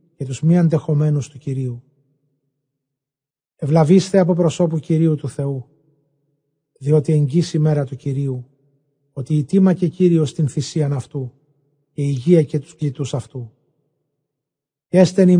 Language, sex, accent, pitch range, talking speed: Greek, male, native, 140-155 Hz, 120 wpm